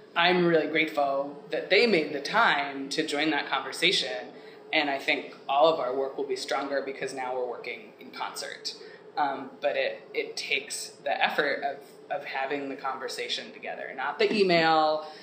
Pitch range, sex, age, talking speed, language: 150-205 Hz, female, 20-39, 175 wpm, English